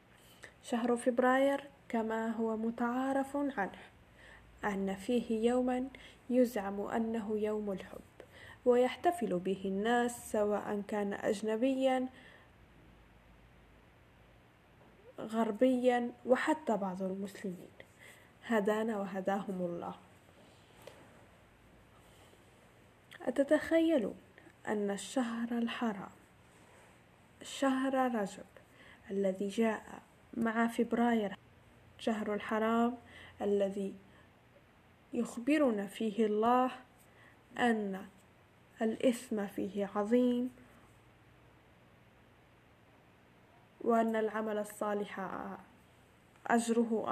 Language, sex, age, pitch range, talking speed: Arabic, female, 10-29, 200-245 Hz, 65 wpm